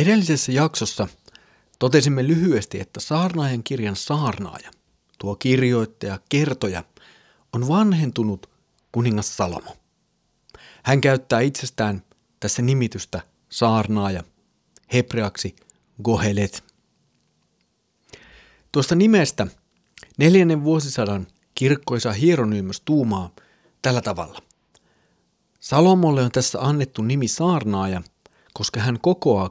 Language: Finnish